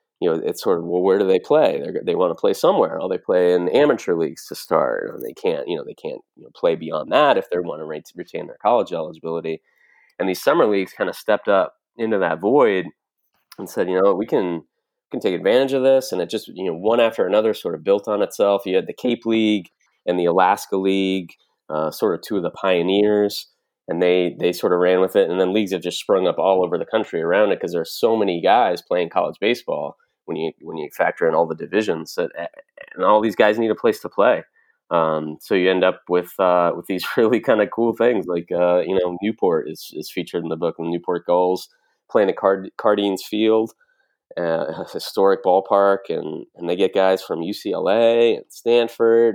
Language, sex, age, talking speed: English, male, 20-39, 235 wpm